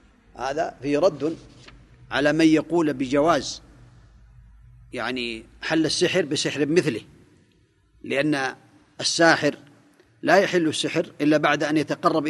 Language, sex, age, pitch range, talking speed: Arabic, male, 40-59, 140-175 Hz, 100 wpm